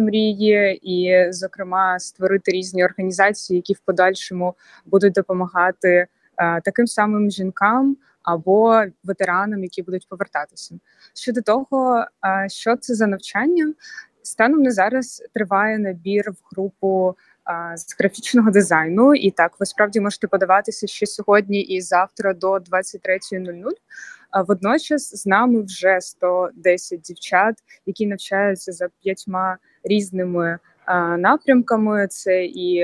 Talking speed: 120 wpm